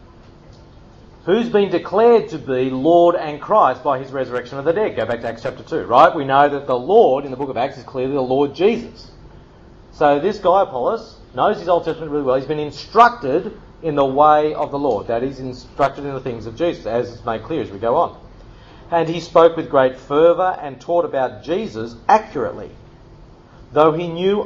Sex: male